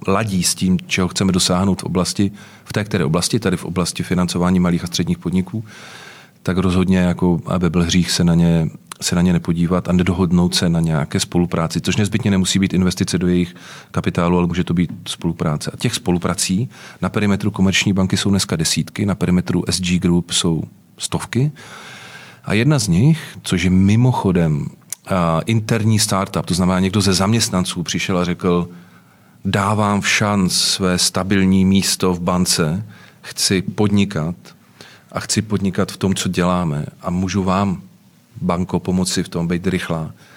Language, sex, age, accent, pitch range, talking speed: Czech, male, 40-59, native, 90-100 Hz, 155 wpm